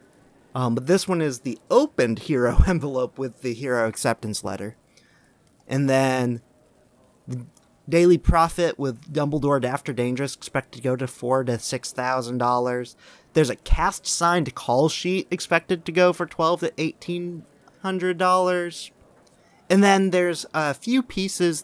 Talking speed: 150 wpm